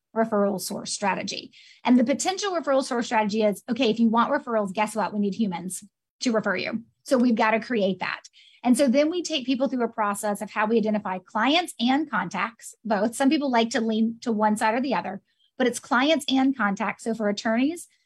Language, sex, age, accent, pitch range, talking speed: English, female, 30-49, American, 210-255 Hz, 215 wpm